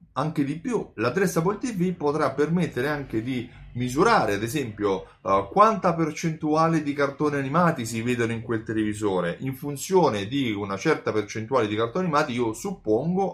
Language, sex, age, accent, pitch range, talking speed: Italian, male, 30-49, native, 105-145 Hz, 155 wpm